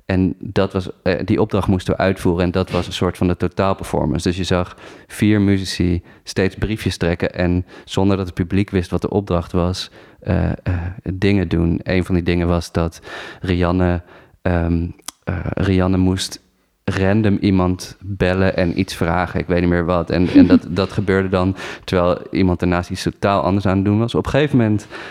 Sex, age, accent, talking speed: male, 30-49, Dutch, 190 wpm